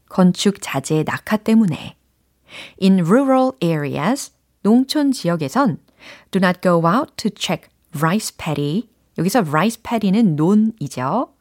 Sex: female